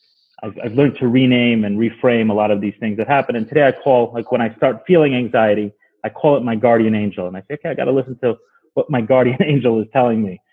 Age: 30-49